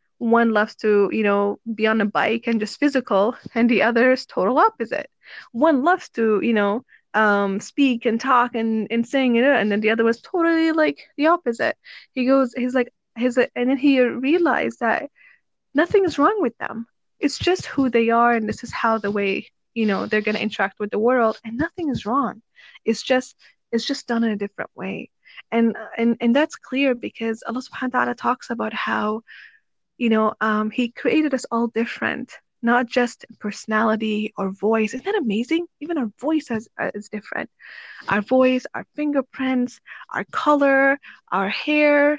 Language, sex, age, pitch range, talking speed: English, female, 20-39, 220-275 Hz, 185 wpm